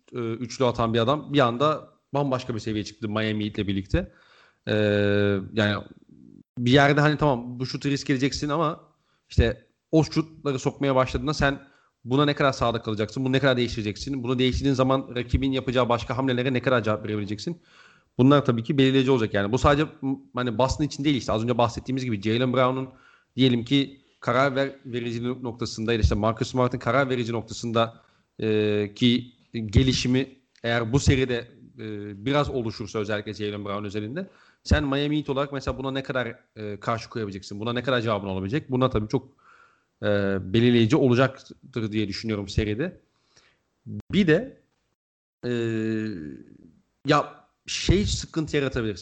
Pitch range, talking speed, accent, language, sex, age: 110-135 Hz, 155 wpm, native, Turkish, male, 40-59